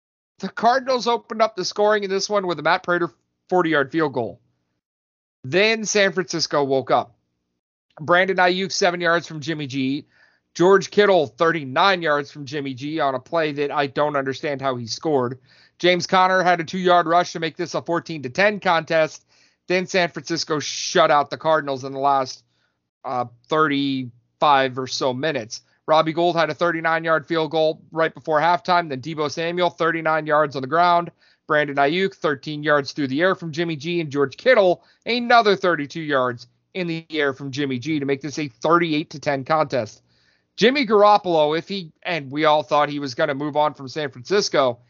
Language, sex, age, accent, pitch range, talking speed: English, male, 40-59, American, 135-175 Hz, 180 wpm